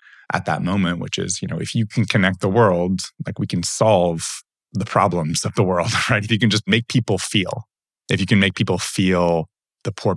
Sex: male